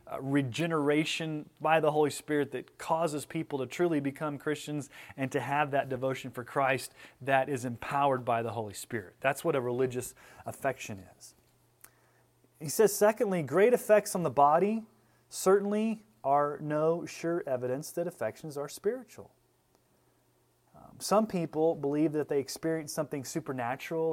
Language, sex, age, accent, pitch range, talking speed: English, male, 30-49, American, 130-175 Hz, 145 wpm